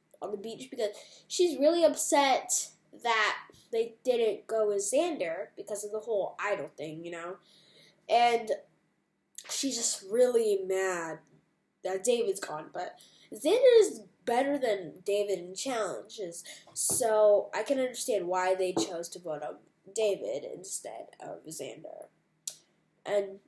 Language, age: English, 10-29